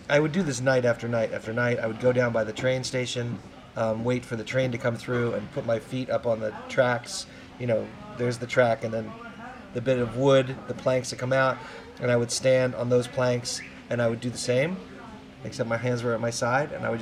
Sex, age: male, 30-49